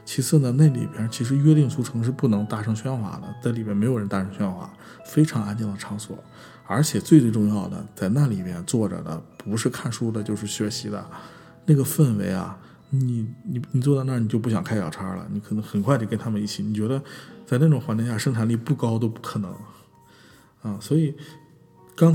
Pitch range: 105-135 Hz